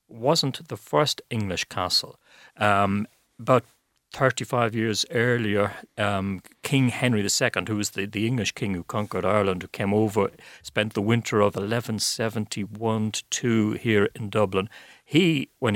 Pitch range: 100-125 Hz